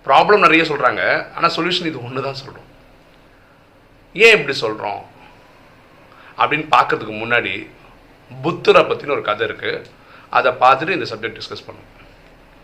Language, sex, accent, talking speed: Tamil, male, native, 125 wpm